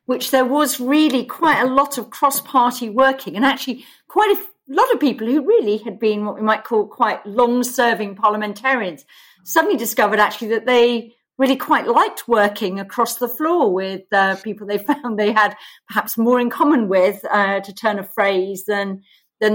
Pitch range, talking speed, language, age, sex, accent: 210-280 Hz, 180 wpm, English, 40-59, female, British